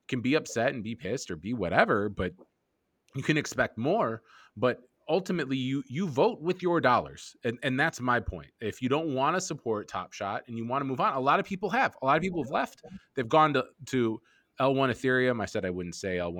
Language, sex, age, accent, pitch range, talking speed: English, male, 20-39, American, 110-150 Hz, 235 wpm